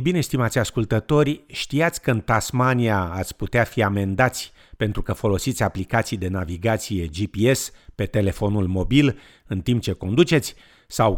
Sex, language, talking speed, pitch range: male, Romanian, 140 wpm, 95-125 Hz